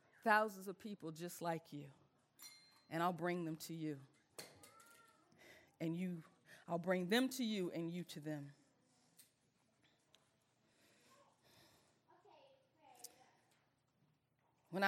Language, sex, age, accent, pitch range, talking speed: English, female, 40-59, American, 165-205 Hz, 95 wpm